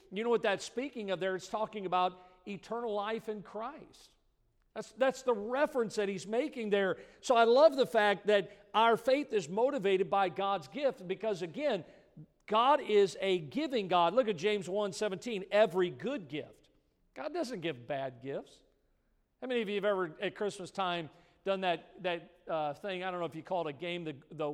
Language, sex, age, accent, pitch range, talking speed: English, male, 50-69, American, 180-220 Hz, 195 wpm